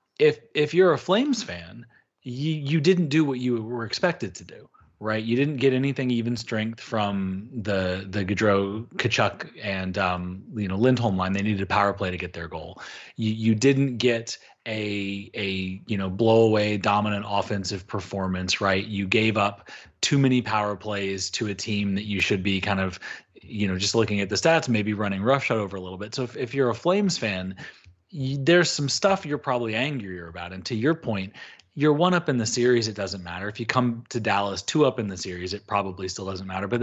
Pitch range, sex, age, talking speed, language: 100-125 Hz, male, 30-49, 210 wpm, English